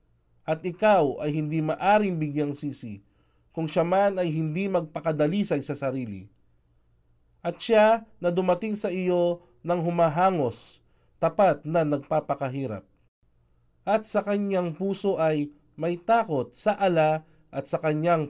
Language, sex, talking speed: Filipino, male, 125 wpm